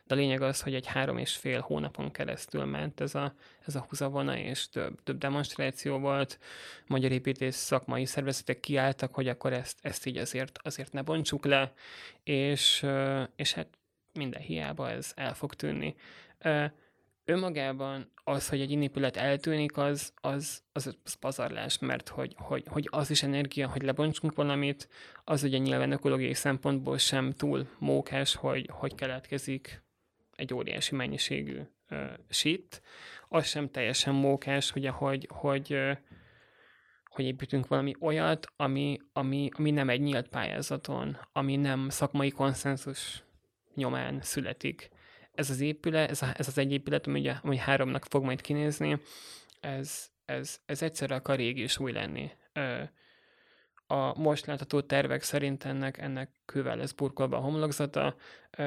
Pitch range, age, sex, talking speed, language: 130-145 Hz, 20-39, male, 150 wpm, Hungarian